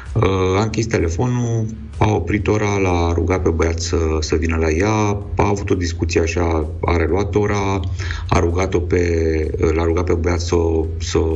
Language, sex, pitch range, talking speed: Romanian, male, 80-95 Hz, 160 wpm